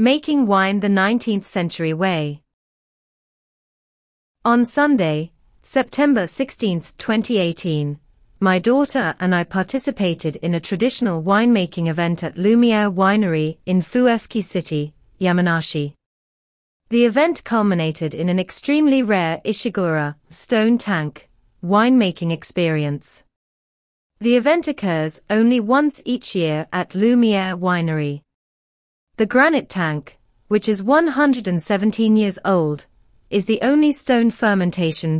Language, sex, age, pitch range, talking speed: English, female, 30-49, 165-230 Hz, 105 wpm